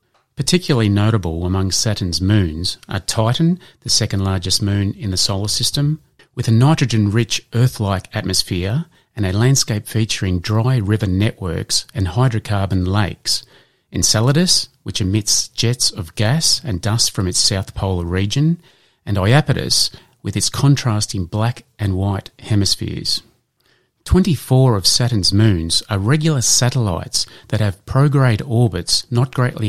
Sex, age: male, 30-49